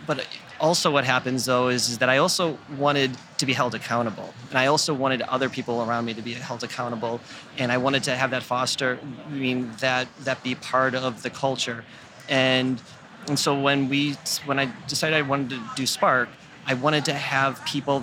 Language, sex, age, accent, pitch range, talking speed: English, male, 30-49, American, 120-135 Hz, 205 wpm